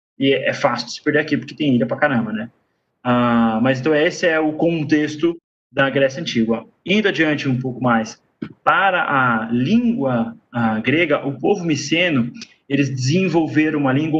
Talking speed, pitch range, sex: 170 wpm, 135-175 Hz, male